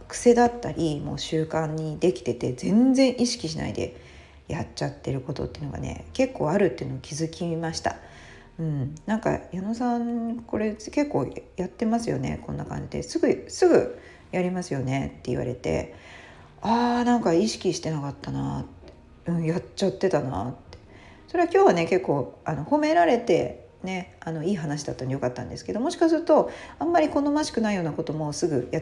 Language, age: Japanese, 40-59